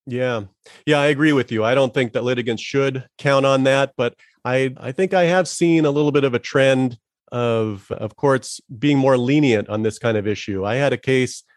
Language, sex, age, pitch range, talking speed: English, male, 40-59, 110-135 Hz, 225 wpm